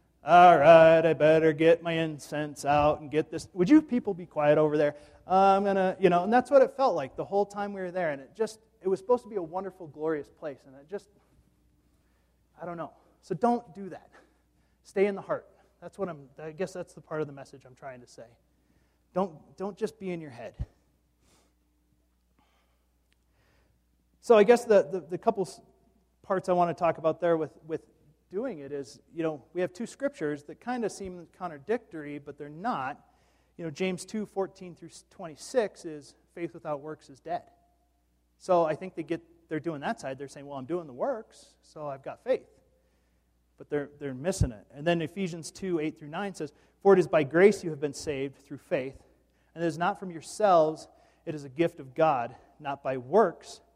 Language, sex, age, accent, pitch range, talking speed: English, male, 30-49, American, 140-185 Hz, 210 wpm